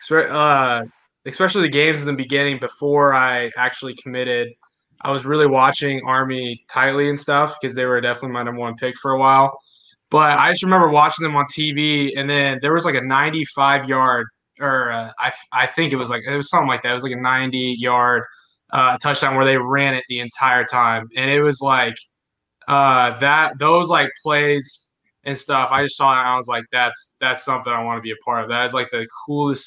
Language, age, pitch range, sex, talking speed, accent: English, 20-39, 120-145 Hz, male, 220 wpm, American